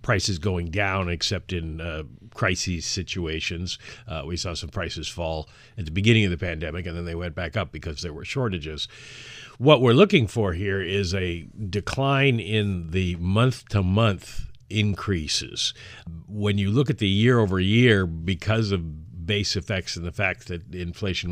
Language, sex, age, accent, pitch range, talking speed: English, male, 50-69, American, 85-105 Hz, 160 wpm